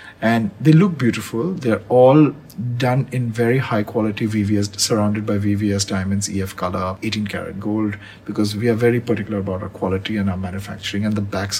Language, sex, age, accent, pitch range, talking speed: English, male, 50-69, Indian, 105-135 Hz, 180 wpm